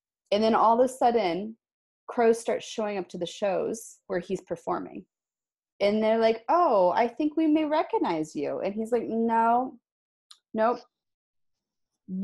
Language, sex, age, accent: English, female, 30-49, American